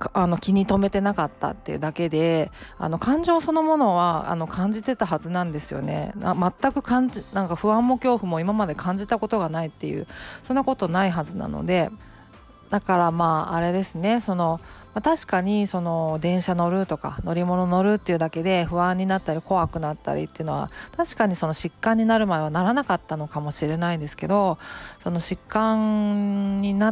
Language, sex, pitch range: Japanese, female, 165-220 Hz